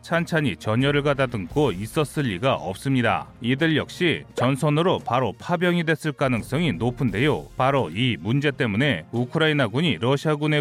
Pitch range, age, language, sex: 130-160 Hz, 30-49, Korean, male